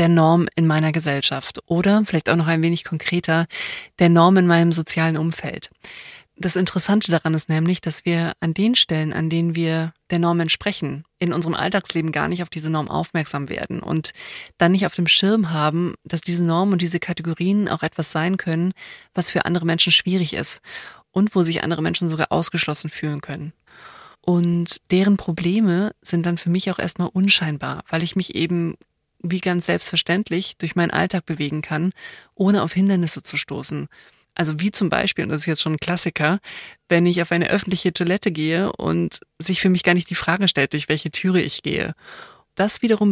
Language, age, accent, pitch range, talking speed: German, 20-39, German, 165-190 Hz, 190 wpm